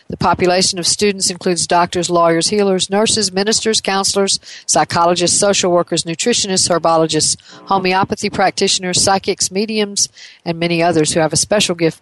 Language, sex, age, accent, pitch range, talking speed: English, female, 50-69, American, 160-195 Hz, 140 wpm